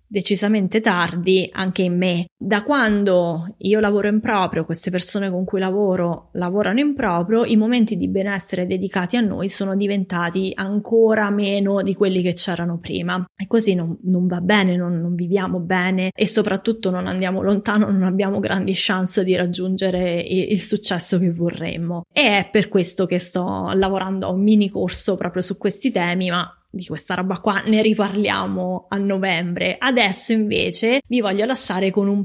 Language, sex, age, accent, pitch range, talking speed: English, female, 20-39, Italian, 180-210 Hz, 170 wpm